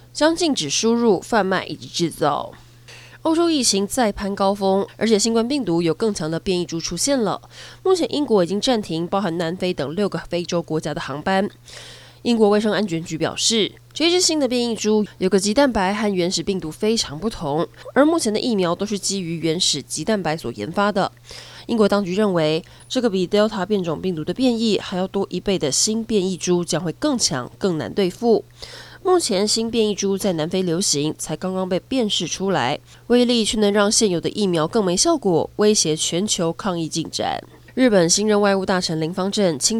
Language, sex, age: Chinese, female, 20-39